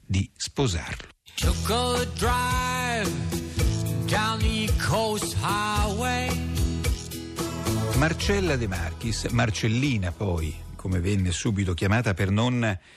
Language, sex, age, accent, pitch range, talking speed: Italian, male, 50-69, native, 85-120 Hz, 60 wpm